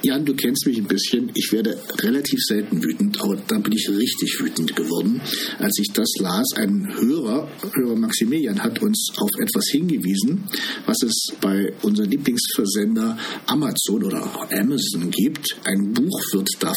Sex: male